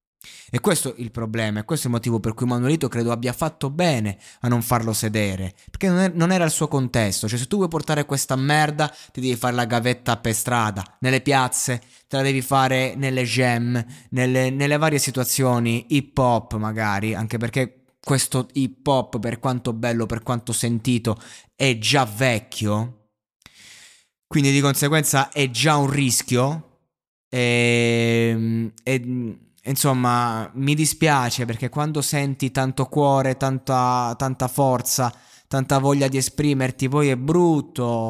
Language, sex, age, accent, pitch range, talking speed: Italian, male, 20-39, native, 115-135 Hz, 155 wpm